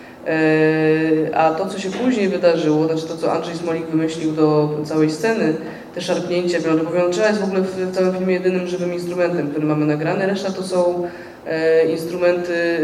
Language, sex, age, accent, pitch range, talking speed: Polish, female, 20-39, native, 165-185 Hz, 170 wpm